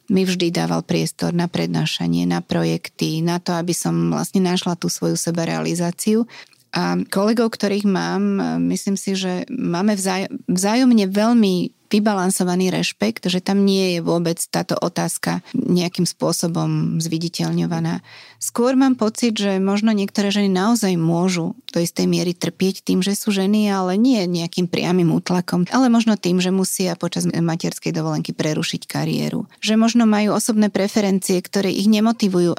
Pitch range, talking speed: 175-205 Hz, 145 wpm